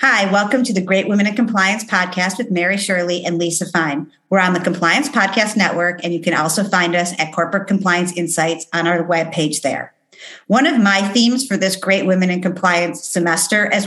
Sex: female